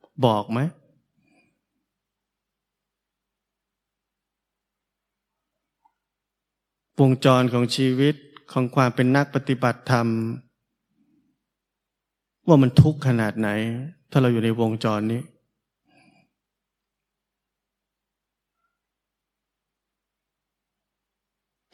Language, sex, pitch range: Thai, male, 120-145 Hz